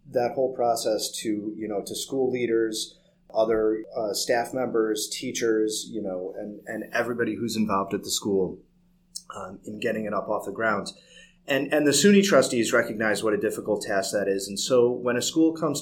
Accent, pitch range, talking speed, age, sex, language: American, 105-130 Hz, 190 wpm, 30-49, male, English